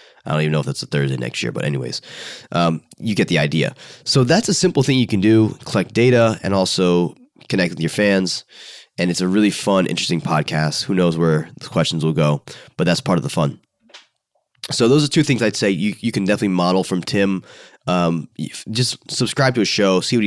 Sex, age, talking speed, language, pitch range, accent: male, 20-39, 220 wpm, English, 85-120 Hz, American